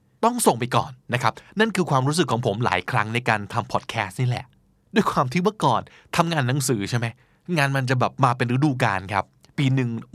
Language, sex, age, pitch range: Thai, male, 20-39, 115-155 Hz